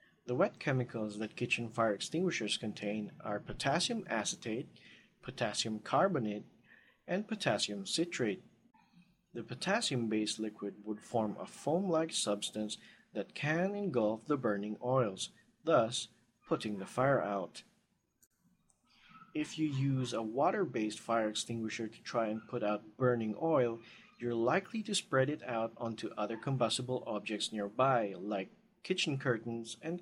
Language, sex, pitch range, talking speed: English, male, 110-150 Hz, 130 wpm